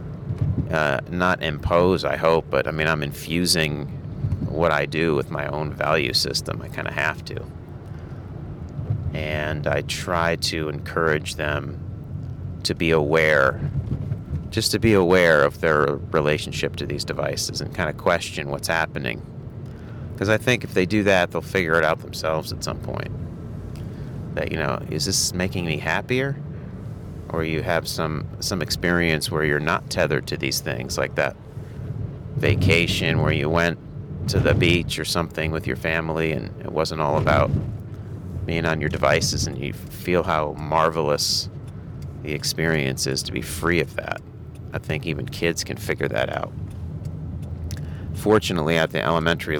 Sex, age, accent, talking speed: male, 30-49, American, 160 wpm